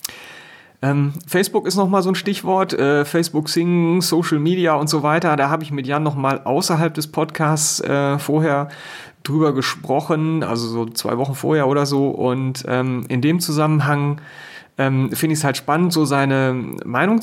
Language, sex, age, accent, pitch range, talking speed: German, male, 30-49, German, 120-155 Hz, 155 wpm